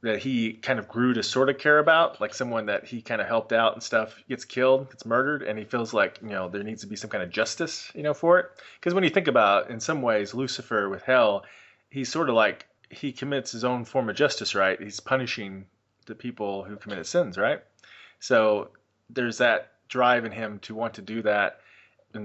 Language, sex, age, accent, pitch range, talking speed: English, male, 30-49, American, 105-130 Hz, 230 wpm